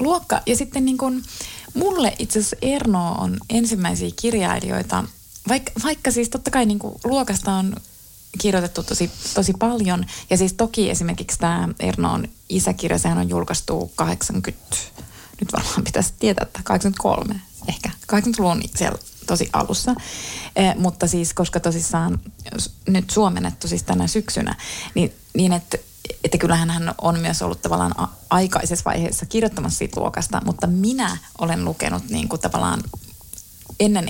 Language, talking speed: Finnish, 145 wpm